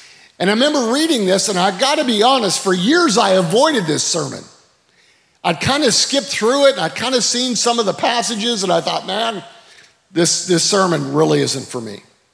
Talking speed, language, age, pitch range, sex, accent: 210 wpm, English, 50-69, 175-235 Hz, male, American